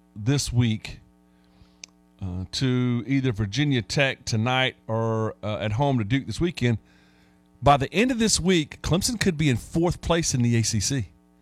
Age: 40-59